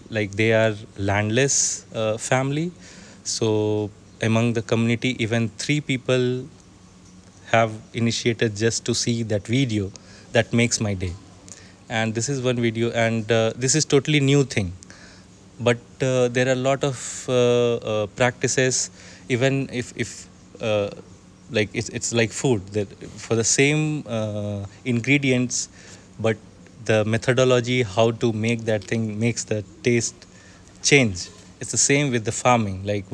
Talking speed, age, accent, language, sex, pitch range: 145 wpm, 20-39, Indian, English, male, 100-120 Hz